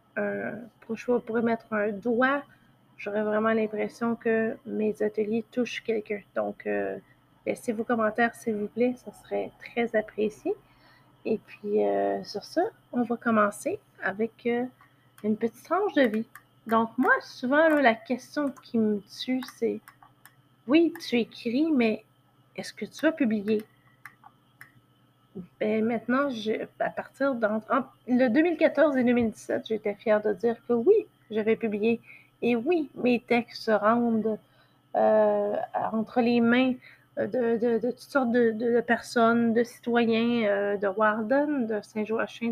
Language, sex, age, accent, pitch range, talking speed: French, female, 30-49, Canadian, 215-245 Hz, 145 wpm